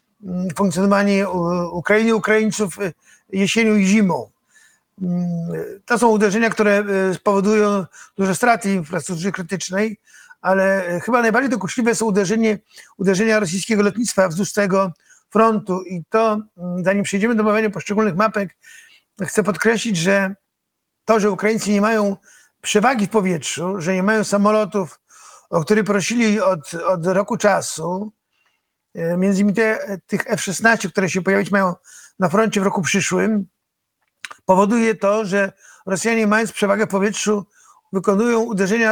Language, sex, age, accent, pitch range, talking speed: Polish, male, 50-69, native, 195-220 Hz, 125 wpm